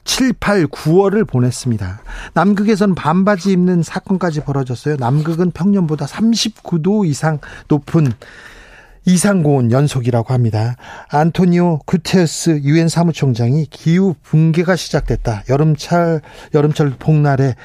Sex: male